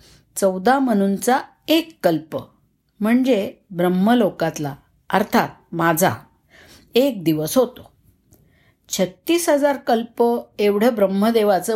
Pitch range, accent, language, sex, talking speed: 180-240 Hz, native, Marathi, female, 80 wpm